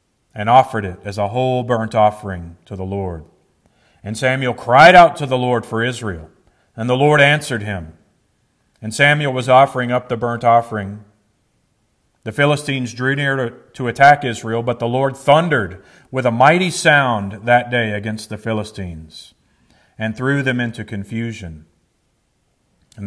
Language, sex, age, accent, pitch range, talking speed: English, male, 40-59, American, 100-125 Hz, 155 wpm